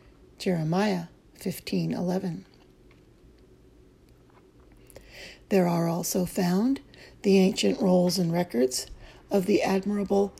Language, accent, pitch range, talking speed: English, American, 120-190 Hz, 80 wpm